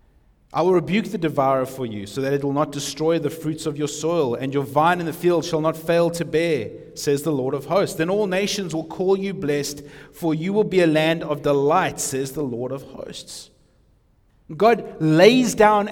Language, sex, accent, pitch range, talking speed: English, male, Australian, 145-205 Hz, 215 wpm